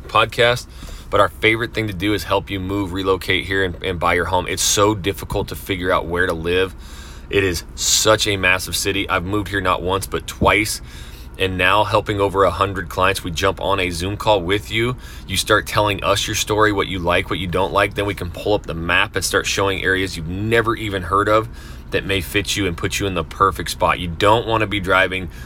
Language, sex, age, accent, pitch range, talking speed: English, male, 30-49, American, 85-110 Hz, 240 wpm